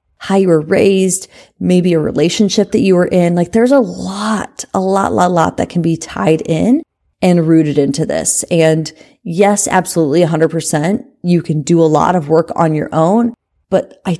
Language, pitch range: English, 160-195 Hz